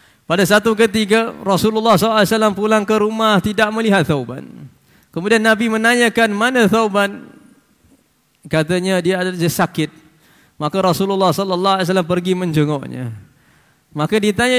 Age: 20-39